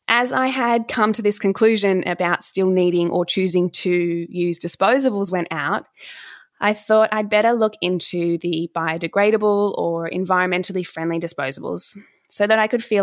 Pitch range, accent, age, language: 170-210 Hz, Australian, 20-39, English